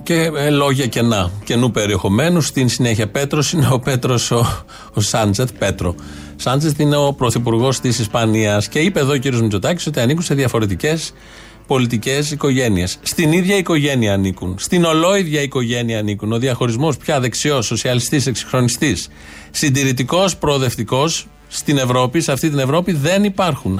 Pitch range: 120-160 Hz